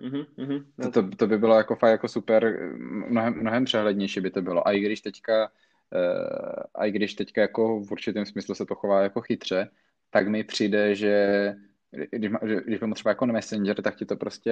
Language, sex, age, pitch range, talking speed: Czech, male, 20-39, 95-115 Hz, 175 wpm